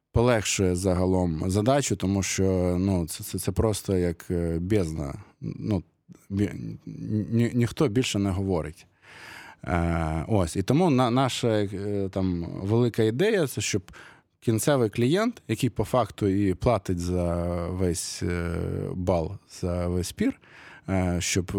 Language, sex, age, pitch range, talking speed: Ukrainian, male, 20-39, 95-115 Hz, 115 wpm